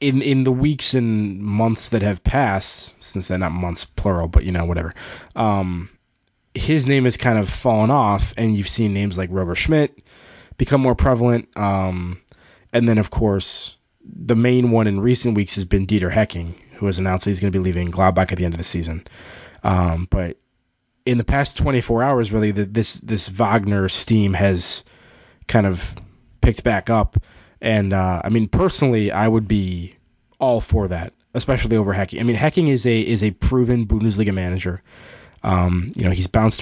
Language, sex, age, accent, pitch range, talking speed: English, male, 20-39, American, 95-115 Hz, 185 wpm